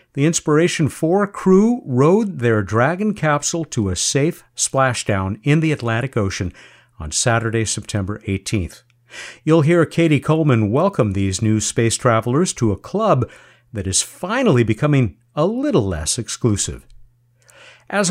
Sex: male